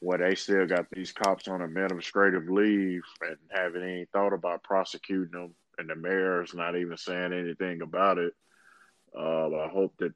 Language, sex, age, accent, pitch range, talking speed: English, male, 20-39, American, 85-95 Hz, 175 wpm